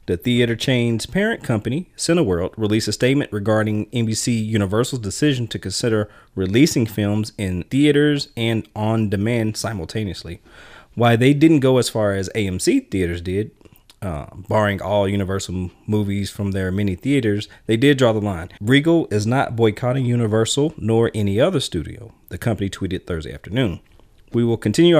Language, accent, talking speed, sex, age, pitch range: English, American, 155 wpm, male, 30-49, 100-135 Hz